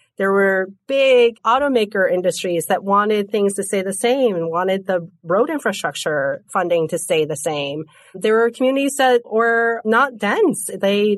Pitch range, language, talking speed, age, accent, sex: 175-235 Hz, English, 160 wpm, 30-49, American, female